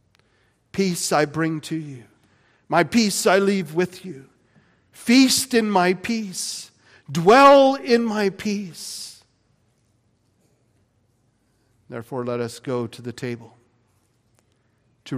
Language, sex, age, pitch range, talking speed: English, male, 50-69, 115-155 Hz, 105 wpm